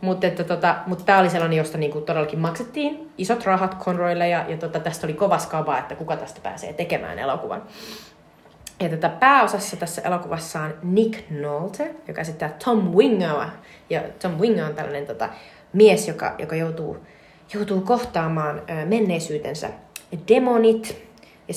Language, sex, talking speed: Finnish, female, 155 wpm